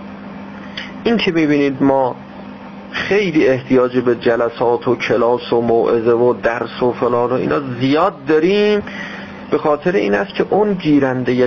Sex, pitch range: male, 115-155 Hz